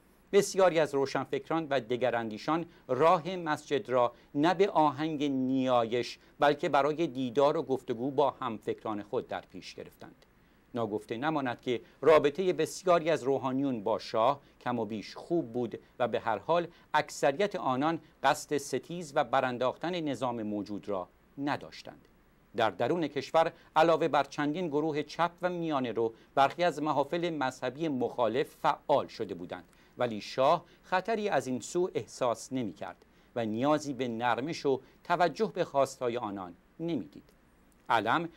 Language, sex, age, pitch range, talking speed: Persian, male, 50-69, 130-170 Hz, 140 wpm